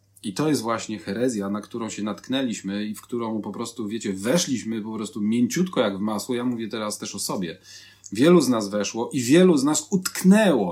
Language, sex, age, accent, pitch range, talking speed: Polish, male, 40-59, native, 125-180 Hz, 205 wpm